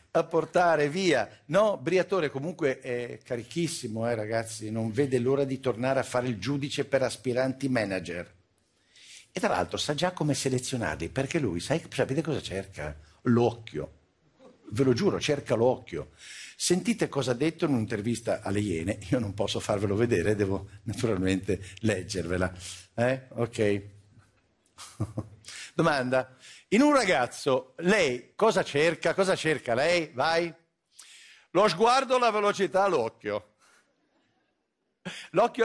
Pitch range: 115-195 Hz